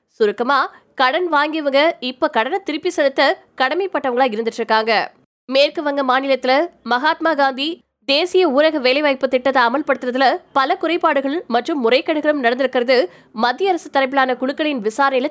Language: Tamil